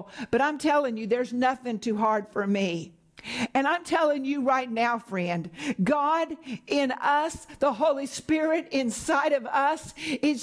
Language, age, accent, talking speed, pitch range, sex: English, 60-79, American, 155 wpm, 190-290 Hz, female